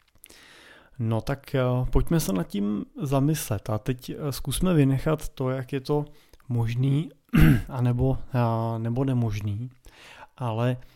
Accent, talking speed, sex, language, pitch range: native, 115 wpm, male, Czech, 115-135 Hz